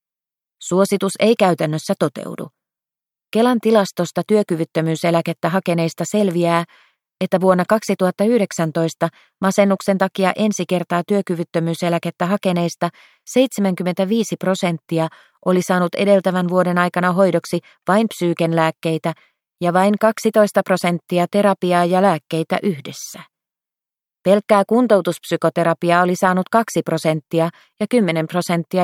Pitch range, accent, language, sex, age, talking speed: 165-195 Hz, native, Finnish, female, 30-49, 95 wpm